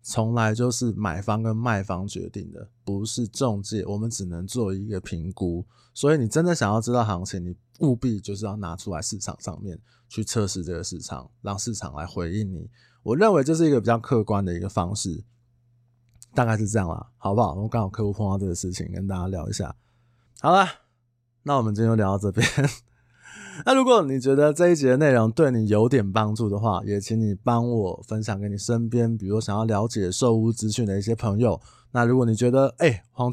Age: 20-39